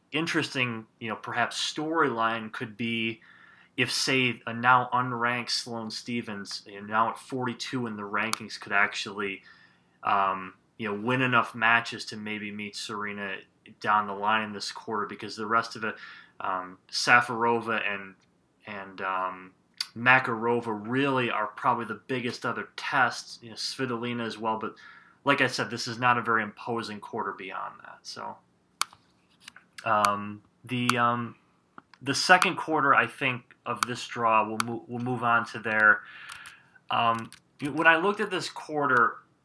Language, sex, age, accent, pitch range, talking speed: English, male, 20-39, American, 110-130 Hz, 155 wpm